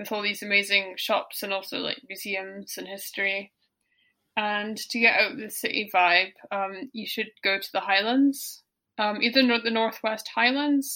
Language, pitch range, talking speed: English, 205-230 Hz, 170 wpm